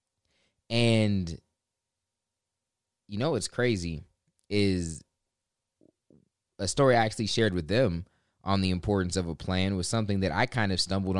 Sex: male